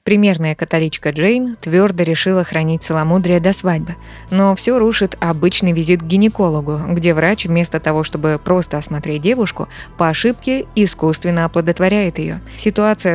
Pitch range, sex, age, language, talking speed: 160-200 Hz, female, 20-39, Russian, 135 wpm